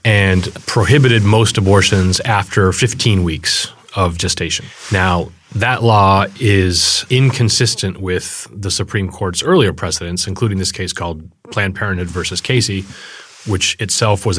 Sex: male